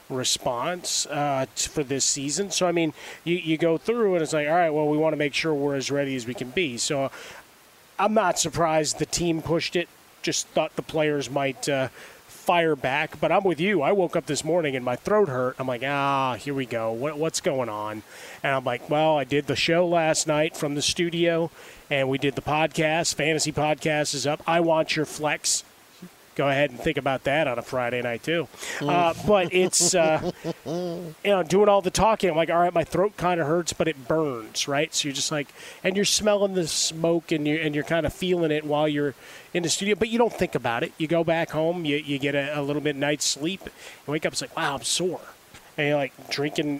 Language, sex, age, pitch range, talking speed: English, male, 30-49, 140-170 Hz, 235 wpm